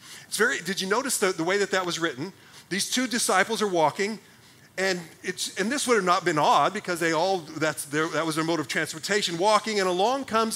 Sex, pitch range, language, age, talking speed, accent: male, 170-220 Hz, English, 40-59, 235 wpm, American